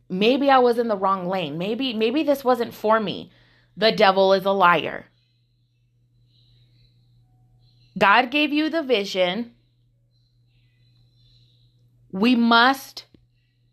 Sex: female